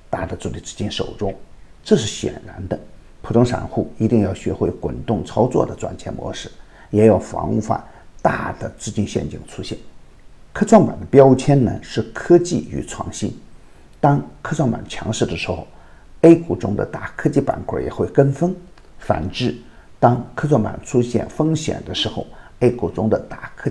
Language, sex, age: Chinese, male, 50-69